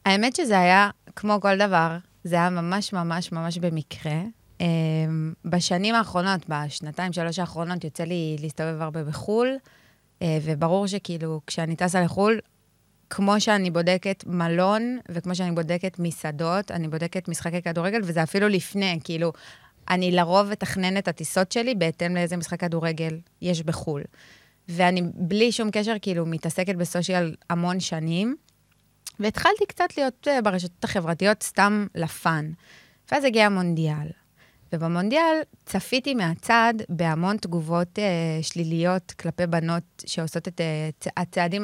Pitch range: 165-200 Hz